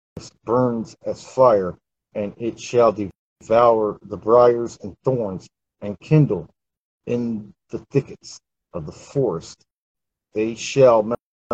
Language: English